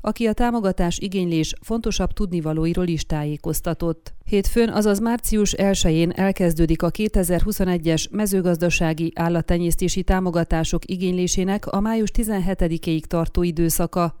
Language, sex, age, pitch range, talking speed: Hungarian, female, 30-49, 170-195 Hz, 100 wpm